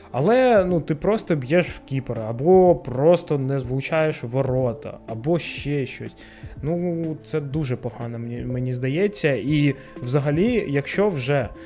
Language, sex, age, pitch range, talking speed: Ukrainian, male, 20-39, 130-170 Hz, 135 wpm